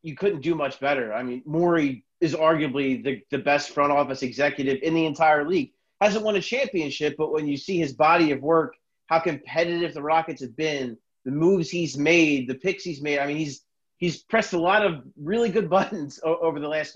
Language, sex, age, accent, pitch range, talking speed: English, male, 30-49, American, 140-175 Hz, 210 wpm